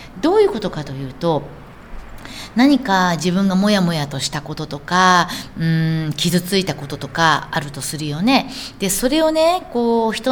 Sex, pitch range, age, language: female, 145-210 Hz, 40-59, Japanese